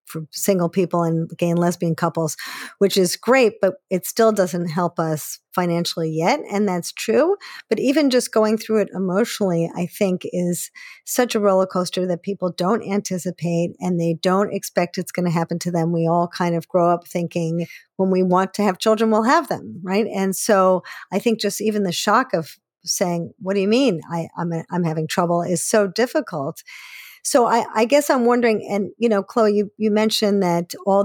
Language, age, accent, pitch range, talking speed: English, 50-69, American, 175-210 Hz, 205 wpm